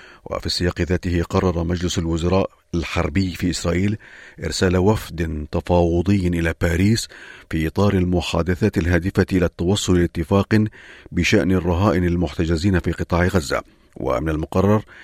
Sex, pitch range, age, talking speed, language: male, 85-100 Hz, 50-69, 115 wpm, Arabic